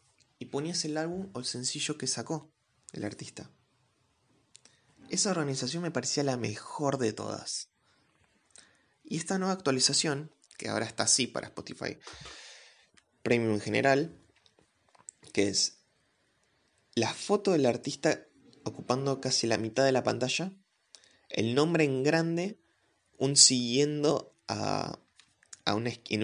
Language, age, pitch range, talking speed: Spanish, 20-39, 115-155 Hz, 120 wpm